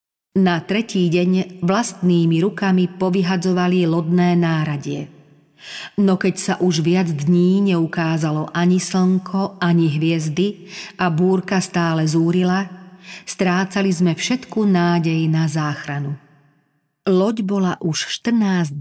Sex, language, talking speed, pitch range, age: female, Slovak, 105 wpm, 155-185 Hz, 40-59